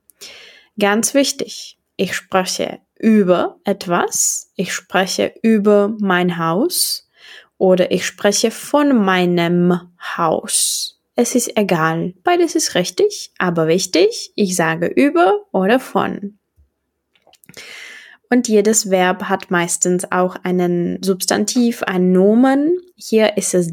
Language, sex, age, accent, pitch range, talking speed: Czech, female, 20-39, German, 180-250 Hz, 110 wpm